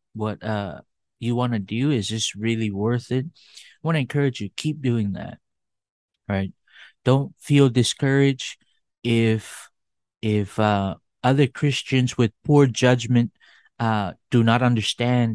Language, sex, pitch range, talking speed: English, male, 110-130 Hz, 135 wpm